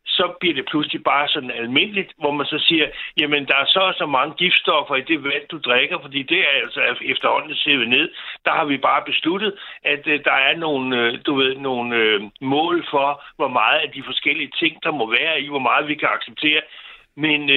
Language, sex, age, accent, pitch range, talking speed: Danish, male, 60-79, native, 140-170 Hz, 210 wpm